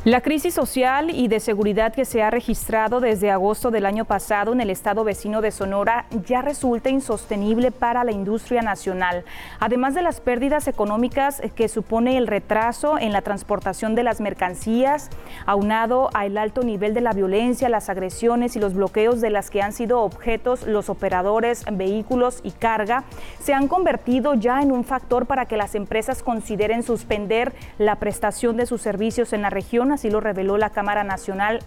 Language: Spanish